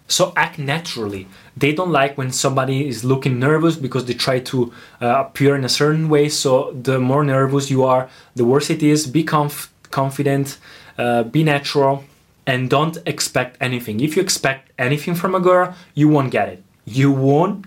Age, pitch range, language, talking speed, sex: 20-39, 130-170 Hz, Italian, 180 wpm, male